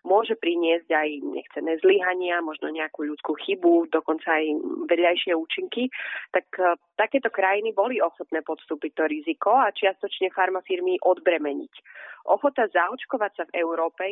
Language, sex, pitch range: Slovak, female, 170-210 Hz